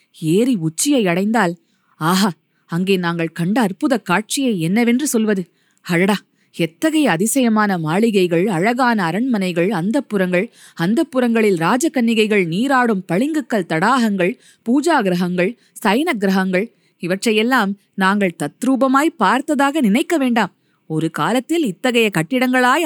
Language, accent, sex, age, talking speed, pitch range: Tamil, native, female, 20-39, 85 wpm, 185-255 Hz